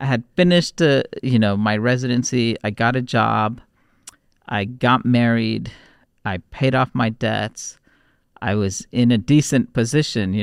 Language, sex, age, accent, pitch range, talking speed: English, male, 40-59, American, 105-130 Hz, 155 wpm